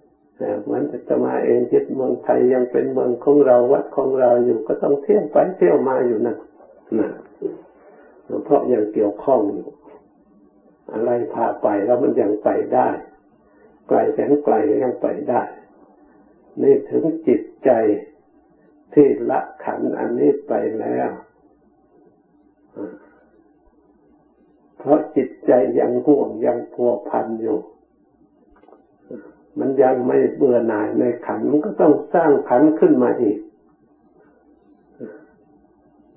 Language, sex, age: Thai, male, 60-79